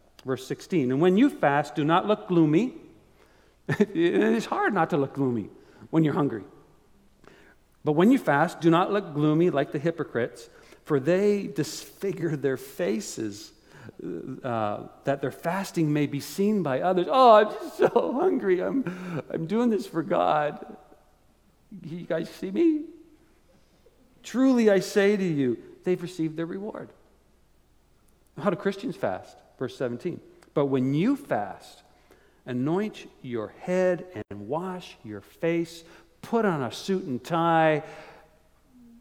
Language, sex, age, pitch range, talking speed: English, male, 50-69, 115-180 Hz, 140 wpm